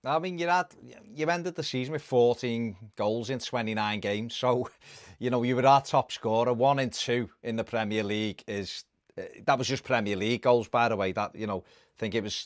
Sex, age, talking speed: male, 30-49, 215 wpm